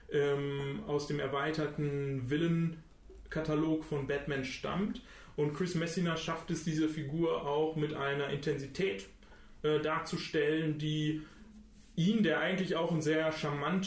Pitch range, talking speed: 135-160 Hz, 120 wpm